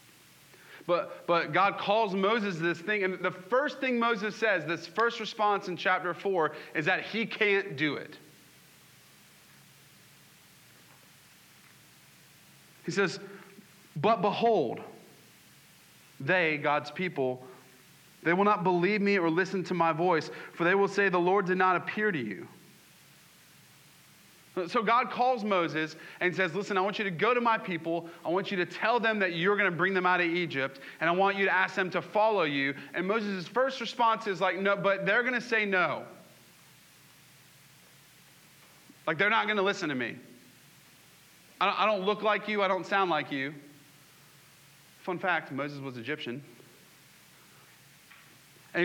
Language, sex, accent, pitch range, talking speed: English, male, American, 165-205 Hz, 160 wpm